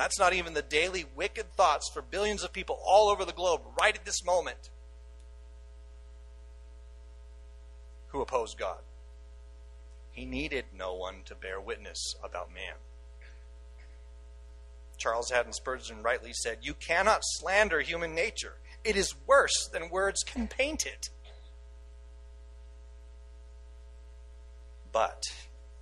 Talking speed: 115 wpm